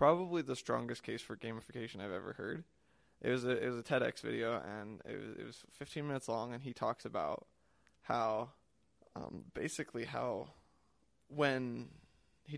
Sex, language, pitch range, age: male, English, 120-140 Hz, 20-39